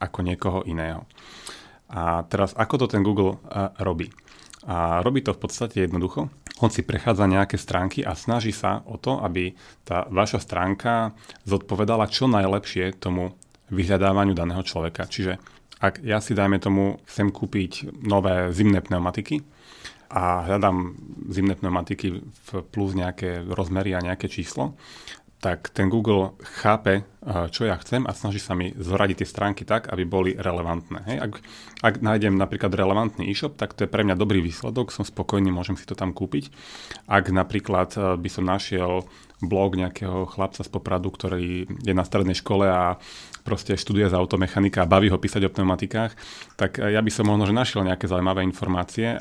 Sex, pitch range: male, 90-105 Hz